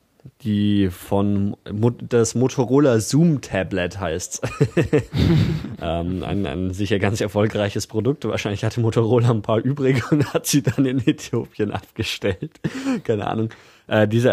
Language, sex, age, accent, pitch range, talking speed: German, male, 20-39, German, 95-110 Hz, 125 wpm